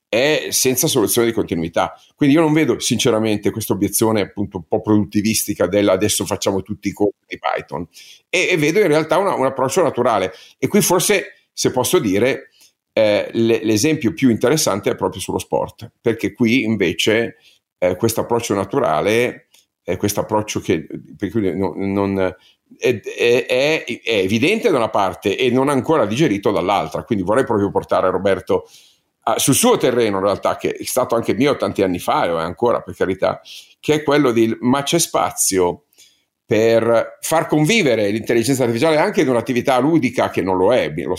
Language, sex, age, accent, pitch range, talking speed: Italian, male, 50-69, native, 100-140 Hz, 175 wpm